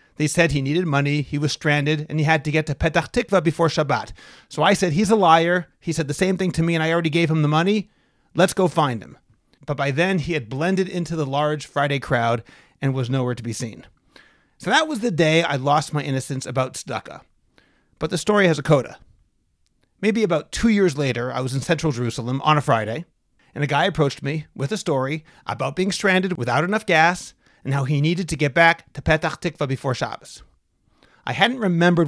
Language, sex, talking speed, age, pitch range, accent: English, male, 220 wpm, 30-49, 140-180 Hz, American